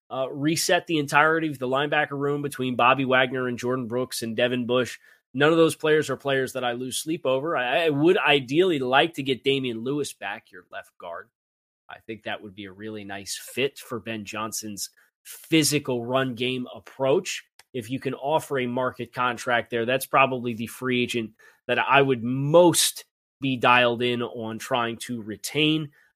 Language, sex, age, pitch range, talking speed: English, male, 20-39, 115-145 Hz, 185 wpm